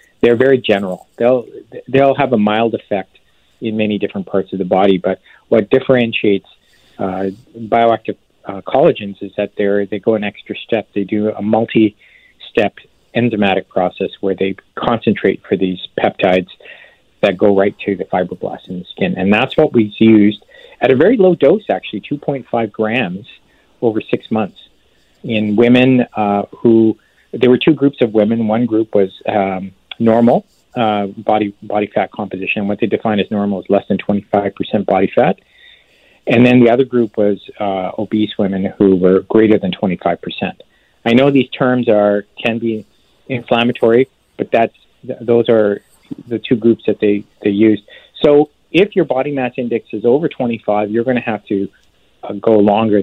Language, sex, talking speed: English, male, 175 wpm